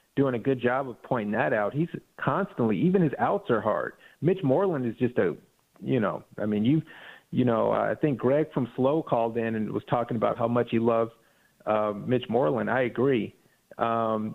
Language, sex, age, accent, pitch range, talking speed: English, male, 40-59, American, 120-160 Hz, 205 wpm